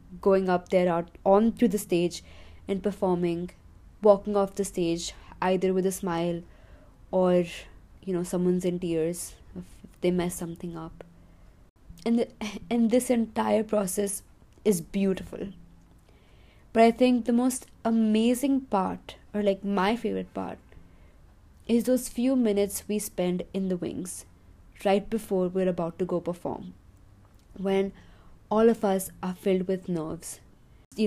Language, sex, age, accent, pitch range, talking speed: English, female, 20-39, Indian, 170-195 Hz, 145 wpm